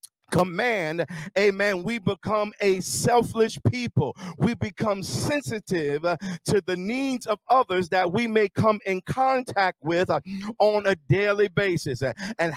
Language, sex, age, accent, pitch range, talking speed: English, male, 50-69, American, 180-230 Hz, 130 wpm